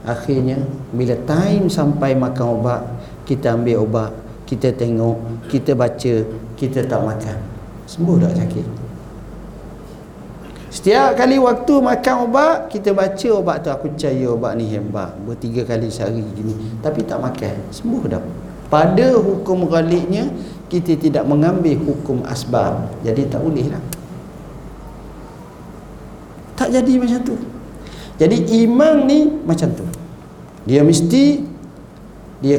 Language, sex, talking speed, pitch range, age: Malay, male, 125 wpm, 120-195 Hz, 50-69